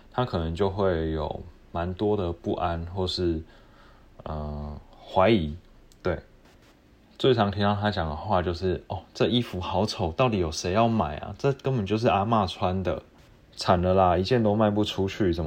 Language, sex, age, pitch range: Chinese, male, 20-39, 85-105 Hz